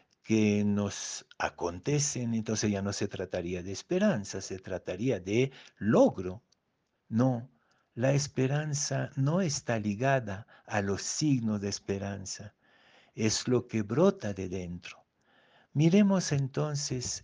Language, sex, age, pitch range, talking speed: Spanish, male, 60-79, 110-140 Hz, 115 wpm